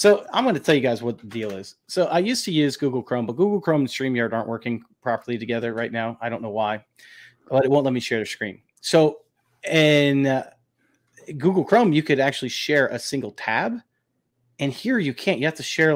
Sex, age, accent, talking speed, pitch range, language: male, 30-49, American, 230 wpm, 115-150 Hz, English